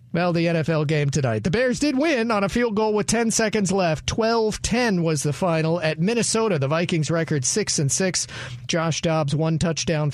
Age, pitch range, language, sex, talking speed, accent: 40-59, 145-185 Hz, English, male, 200 wpm, American